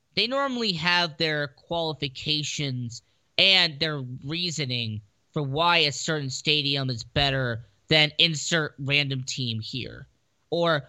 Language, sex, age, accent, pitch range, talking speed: English, male, 20-39, American, 130-165 Hz, 115 wpm